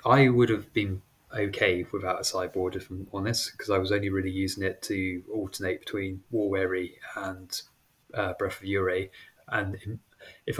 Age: 20-39